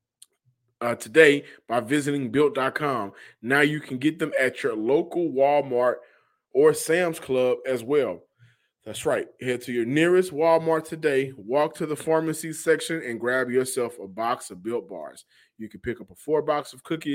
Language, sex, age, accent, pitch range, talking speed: English, male, 20-39, American, 125-160 Hz, 170 wpm